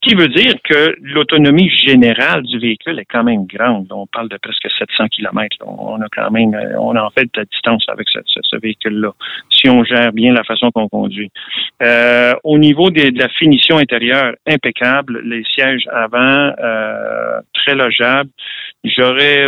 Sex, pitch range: male, 115-145 Hz